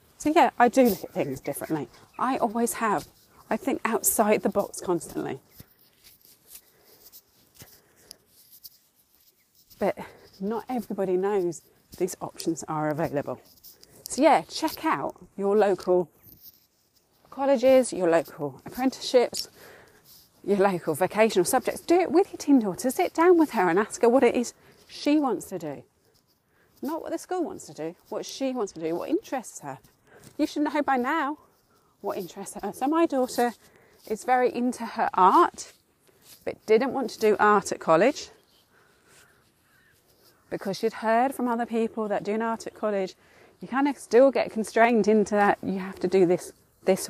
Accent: British